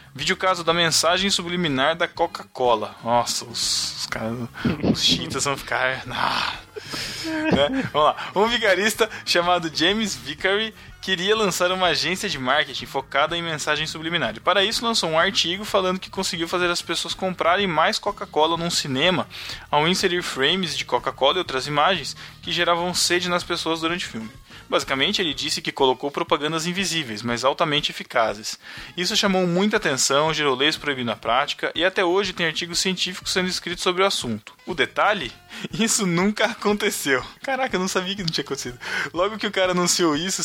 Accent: Brazilian